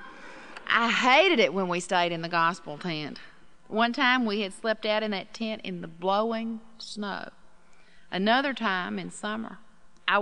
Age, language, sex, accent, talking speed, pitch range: 40-59, English, female, American, 165 wpm, 180-215 Hz